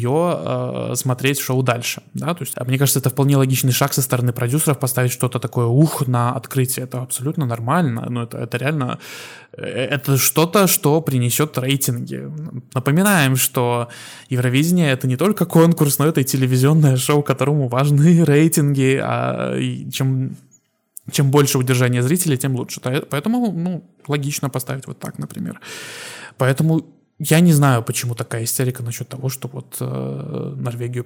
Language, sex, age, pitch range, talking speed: Russian, male, 20-39, 125-150 Hz, 145 wpm